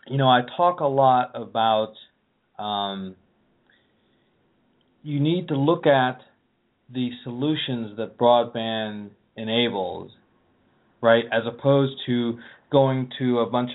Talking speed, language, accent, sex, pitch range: 115 wpm, English, American, male, 115-135 Hz